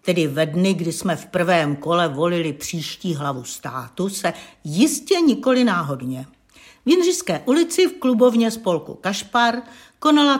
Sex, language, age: female, Czech, 60-79